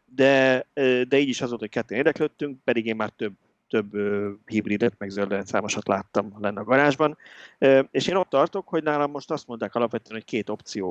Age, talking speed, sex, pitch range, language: 30-49, 195 wpm, male, 110-135 Hz, Hungarian